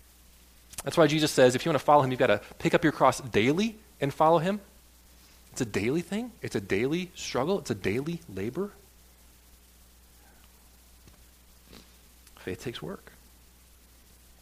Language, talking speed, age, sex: English, 150 wpm, 30-49, male